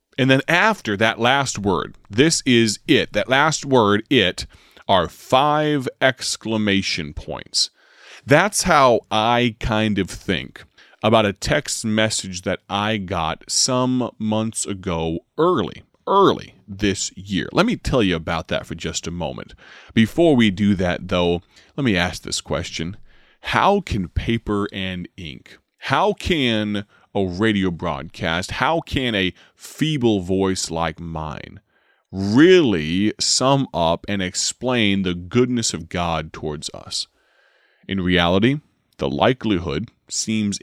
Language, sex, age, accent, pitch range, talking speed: English, male, 30-49, American, 90-120 Hz, 135 wpm